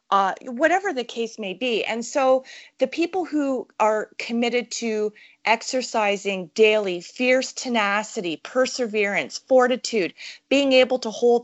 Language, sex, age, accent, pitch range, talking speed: English, female, 30-49, American, 210-265 Hz, 125 wpm